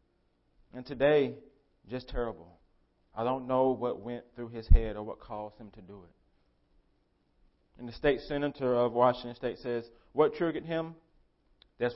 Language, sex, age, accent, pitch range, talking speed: English, male, 30-49, American, 90-135 Hz, 155 wpm